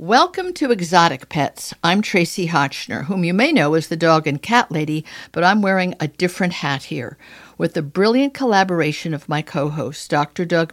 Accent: American